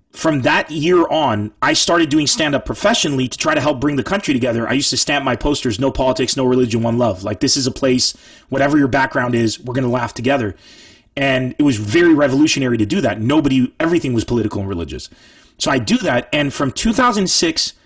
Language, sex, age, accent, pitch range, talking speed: English, male, 30-49, American, 130-180 Hz, 215 wpm